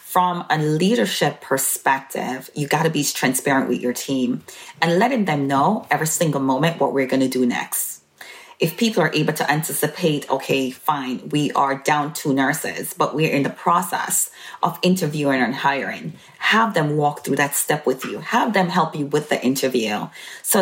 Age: 30-49